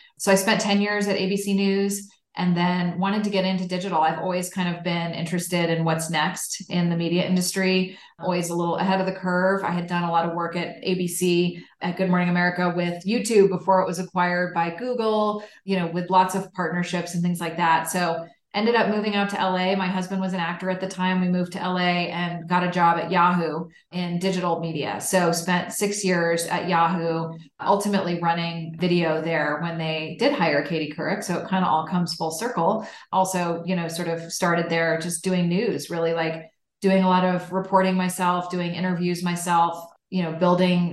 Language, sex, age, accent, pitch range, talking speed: English, female, 30-49, American, 170-185 Hz, 210 wpm